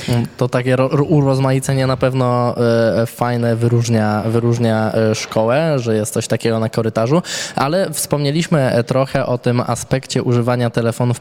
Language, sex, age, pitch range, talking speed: Polish, male, 20-39, 115-130 Hz, 125 wpm